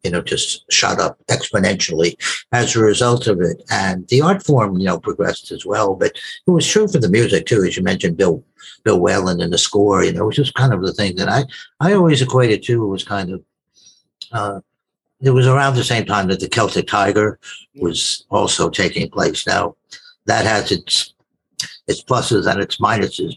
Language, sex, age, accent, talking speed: English, male, 60-79, American, 205 wpm